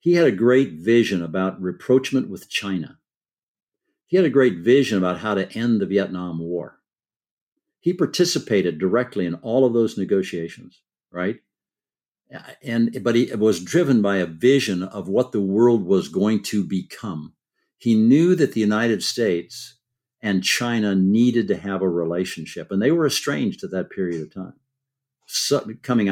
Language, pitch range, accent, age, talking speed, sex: English, 95-130 Hz, American, 60-79, 160 wpm, male